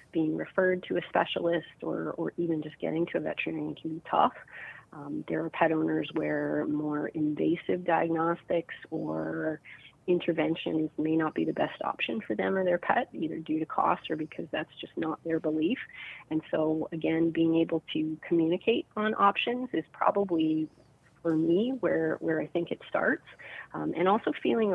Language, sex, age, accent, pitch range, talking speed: English, female, 30-49, American, 155-170 Hz, 175 wpm